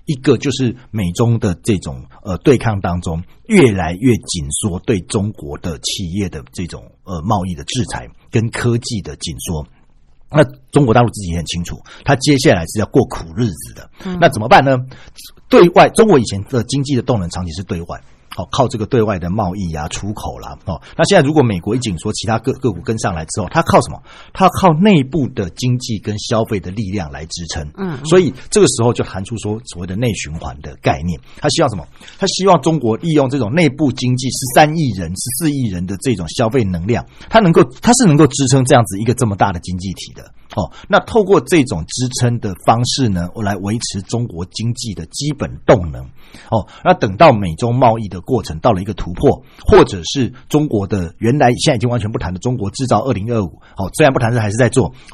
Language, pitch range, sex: Chinese, 90-135 Hz, male